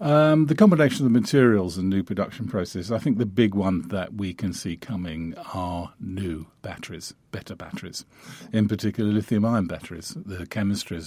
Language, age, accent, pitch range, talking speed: English, 50-69, British, 90-110 Hz, 170 wpm